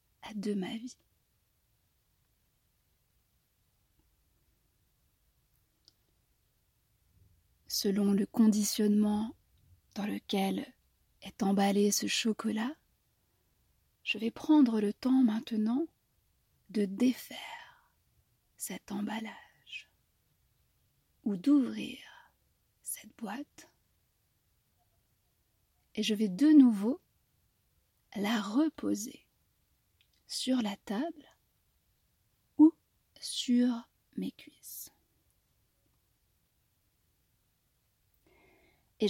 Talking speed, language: 65 wpm, French